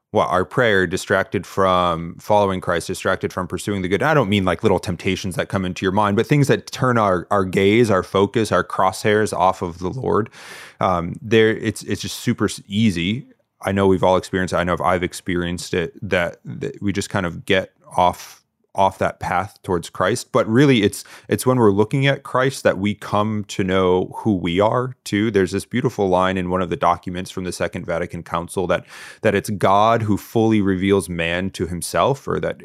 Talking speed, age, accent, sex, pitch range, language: 210 wpm, 30-49, American, male, 90-110 Hz, English